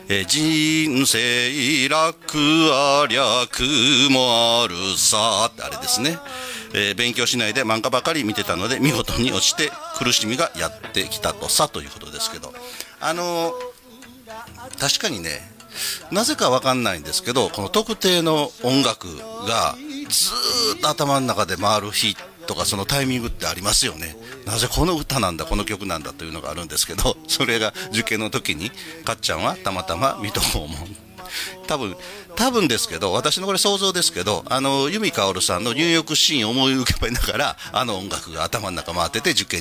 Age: 40-59